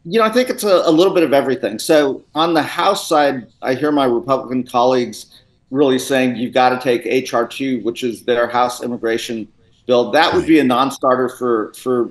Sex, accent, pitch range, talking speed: male, American, 120-140 Hz, 210 wpm